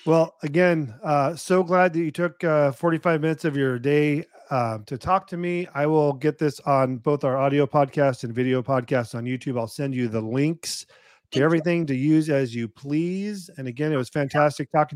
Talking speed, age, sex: 210 wpm, 40-59, male